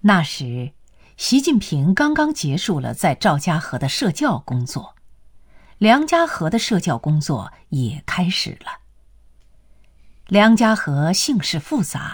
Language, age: Chinese, 50-69